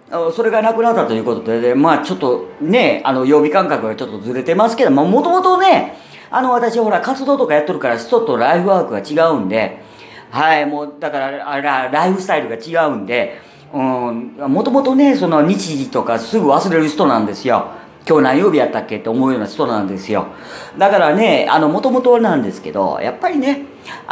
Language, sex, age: Japanese, female, 40-59